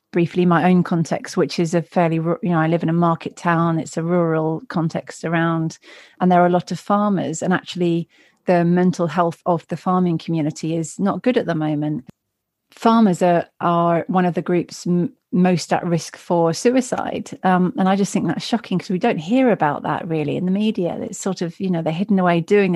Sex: female